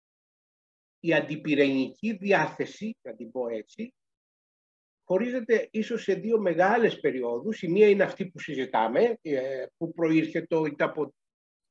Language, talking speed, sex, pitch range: Greek, 115 wpm, male, 135-200 Hz